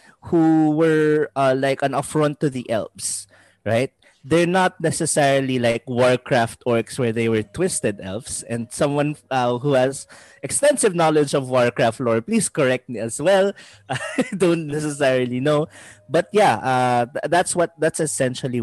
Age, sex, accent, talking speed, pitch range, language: 20-39, male, Filipino, 150 wpm, 110-155 Hz, English